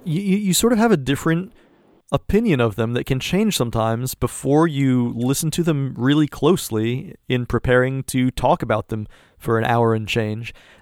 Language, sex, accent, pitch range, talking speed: English, male, American, 125-160 Hz, 175 wpm